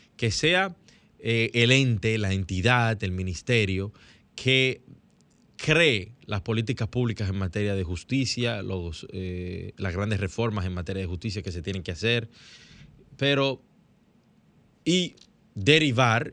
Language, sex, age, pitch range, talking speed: Spanish, male, 20-39, 95-120 Hz, 125 wpm